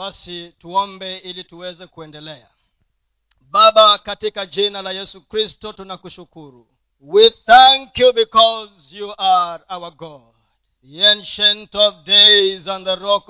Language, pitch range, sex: Swahili, 190-275 Hz, male